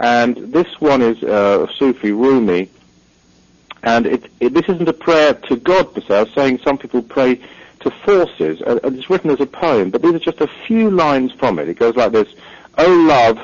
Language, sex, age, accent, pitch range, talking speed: English, male, 50-69, British, 95-155 Hz, 195 wpm